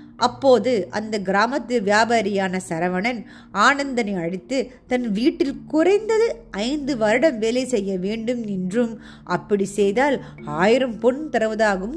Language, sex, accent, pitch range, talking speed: Tamil, female, native, 195-270 Hz, 105 wpm